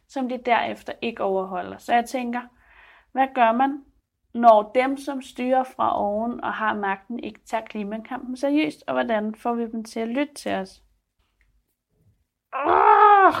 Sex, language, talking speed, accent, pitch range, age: female, Danish, 155 wpm, native, 200-260 Hz, 30-49